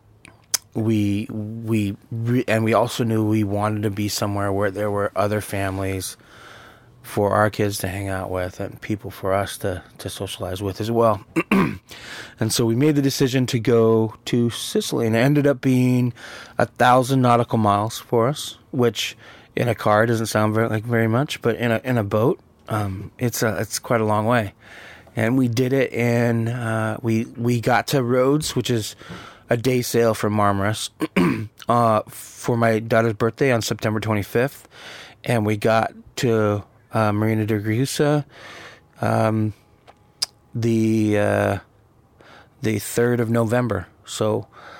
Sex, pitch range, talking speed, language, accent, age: male, 105-120 Hz, 160 wpm, English, American, 20-39